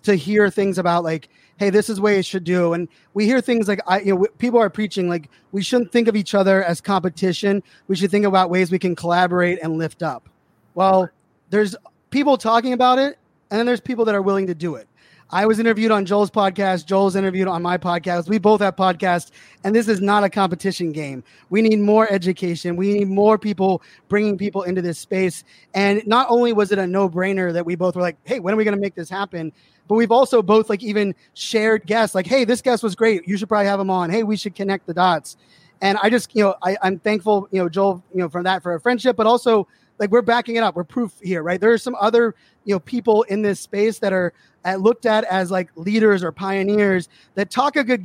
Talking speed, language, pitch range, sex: 245 wpm, English, 185-225 Hz, male